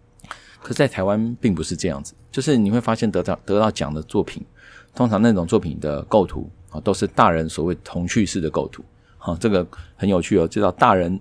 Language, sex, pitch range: Chinese, male, 85-110 Hz